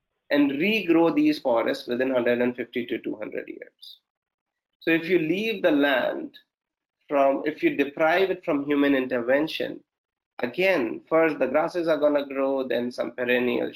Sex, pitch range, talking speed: male, 135-185 Hz, 145 wpm